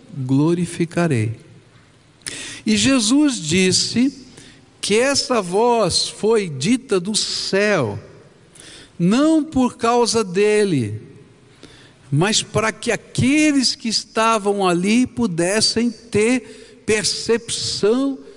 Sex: male